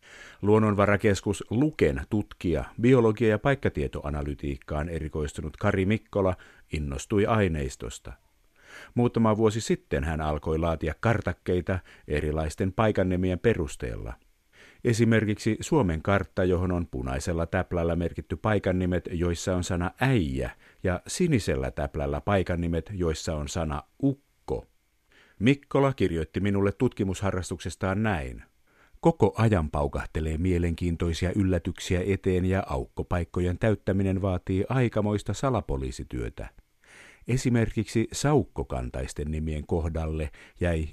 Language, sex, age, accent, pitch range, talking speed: Finnish, male, 50-69, native, 80-105 Hz, 95 wpm